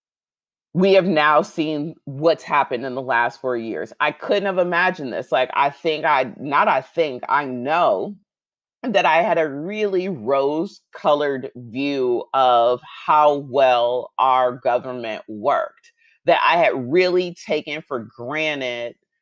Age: 30-49